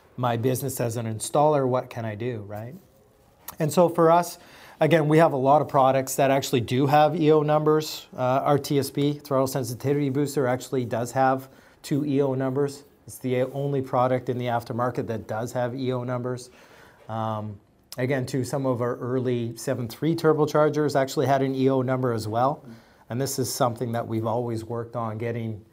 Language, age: English, 30-49